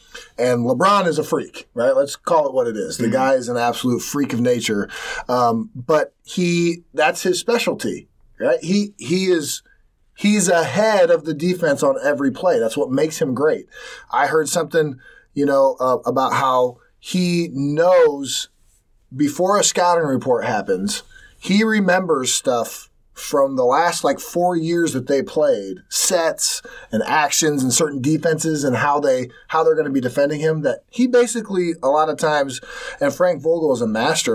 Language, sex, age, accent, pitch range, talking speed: English, male, 30-49, American, 130-205 Hz, 175 wpm